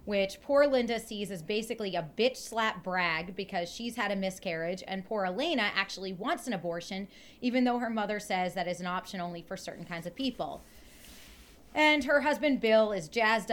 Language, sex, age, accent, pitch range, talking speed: English, female, 30-49, American, 185-240 Hz, 190 wpm